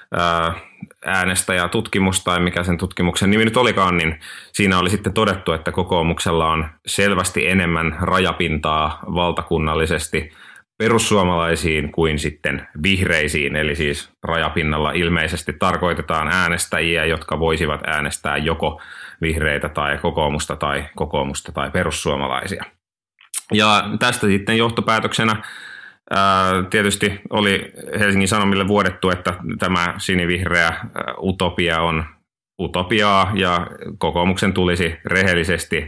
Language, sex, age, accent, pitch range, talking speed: Finnish, male, 30-49, native, 80-95 Hz, 100 wpm